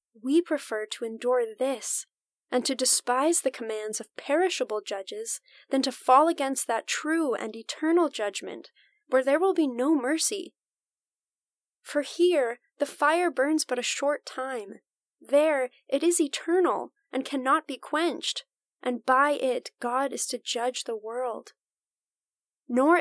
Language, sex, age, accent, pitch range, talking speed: English, female, 10-29, American, 225-290 Hz, 145 wpm